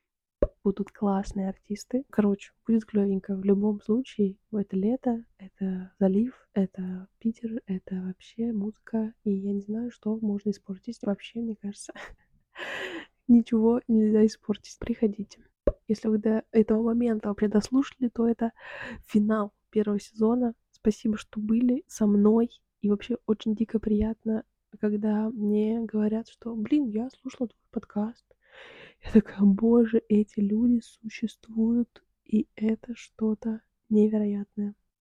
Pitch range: 210-230 Hz